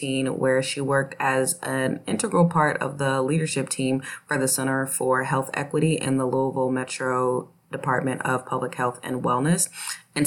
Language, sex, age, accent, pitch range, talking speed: English, female, 20-39, American, 125-140 Hz, 165 wpm